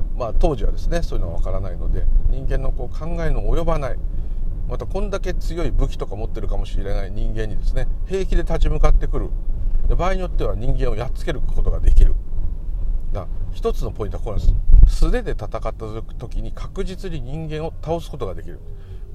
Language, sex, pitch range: Japanese, male, 85-125 Hz